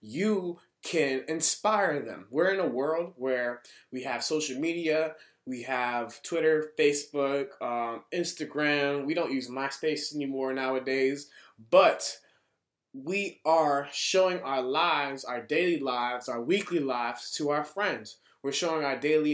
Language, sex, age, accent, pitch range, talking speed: English, male, 20-39, American, 140-195 Hz, 135 wpm